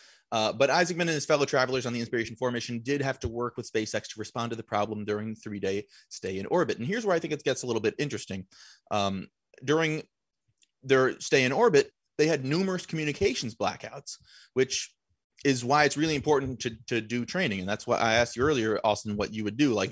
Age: 30-49